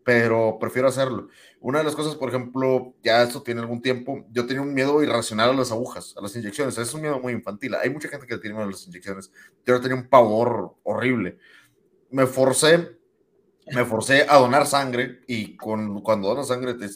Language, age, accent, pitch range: Spanish, 30-49, Mexican, 105-130 Hz